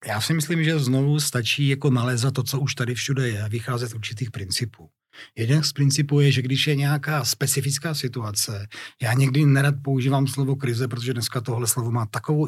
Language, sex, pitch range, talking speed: Czech, male, 120-150 Hz, 190 wpm